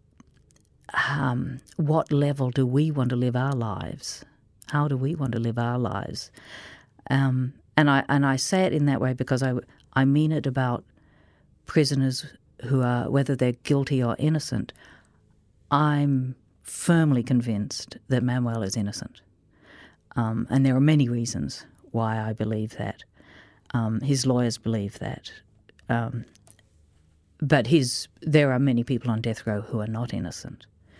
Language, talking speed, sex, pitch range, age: English, 150 wpm, female, 110-135 Hz, 50-69